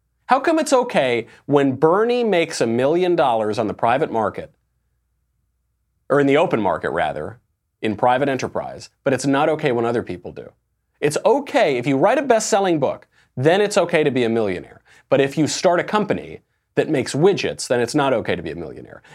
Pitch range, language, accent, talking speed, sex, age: 125-195 Hz, English, American, 195 wpm, male, 30-49